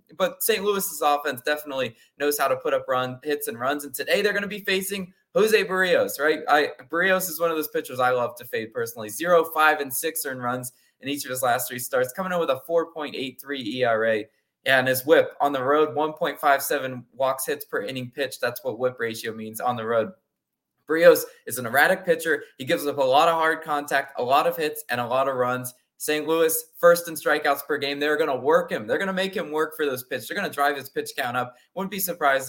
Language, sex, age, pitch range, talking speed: English, male, 20-39, 130-180 Hz, 250 wpm